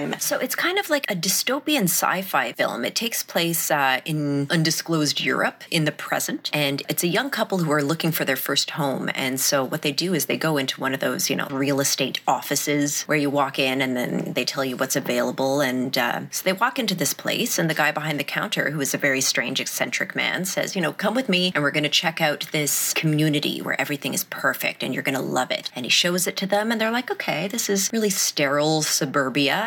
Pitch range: 140-175 Hz